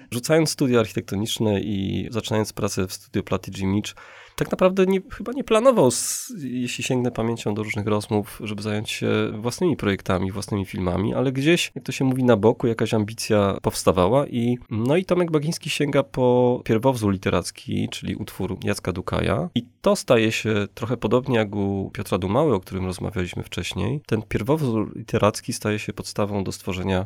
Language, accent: Polish, native